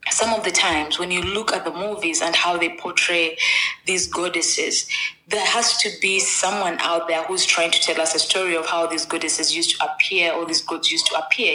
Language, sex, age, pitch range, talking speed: English, female, 20-39, 165-190 Hz, 225 wpm